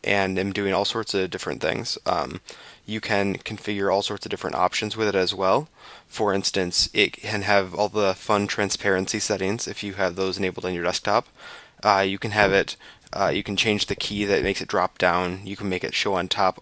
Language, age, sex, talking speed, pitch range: English, 20-39, male, 225 wpm, 95-105 Hz